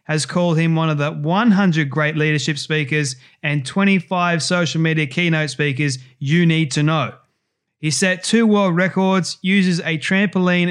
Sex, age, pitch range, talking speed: male, 20-39, 150-180 Hz, 155 wpm